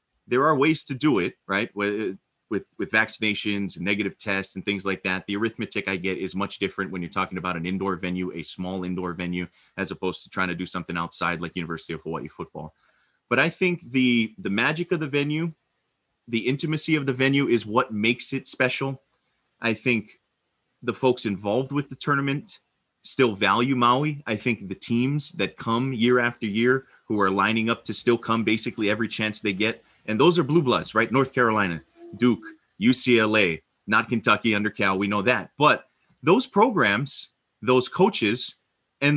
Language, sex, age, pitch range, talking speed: English, male, 30-49, 105-145 Hz, 190 wpm